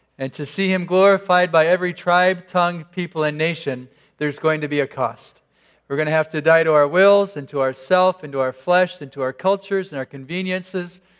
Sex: male